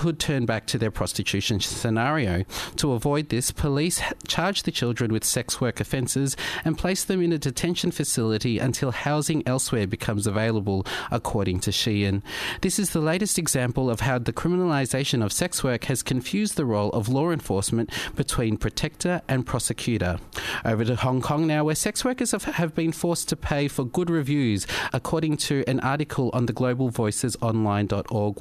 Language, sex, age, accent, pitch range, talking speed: English, male, 40-59, Australian, 115-150 Hz, 165 wpm